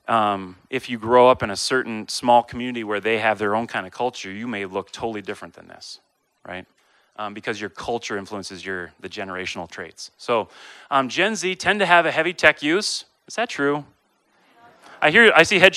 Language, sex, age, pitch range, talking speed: English, male, 30-49, 125-190 Hz, 205 wpm